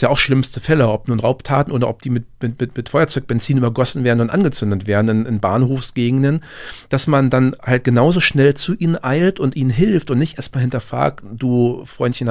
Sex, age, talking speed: male, 40-59, 200 wpm